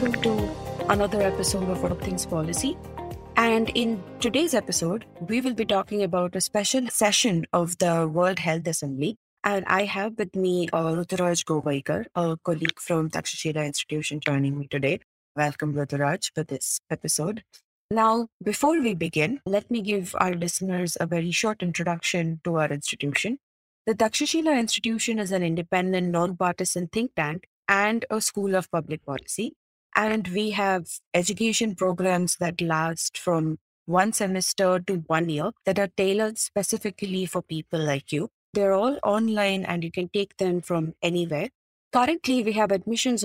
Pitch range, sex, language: 165-215 Hz, female, English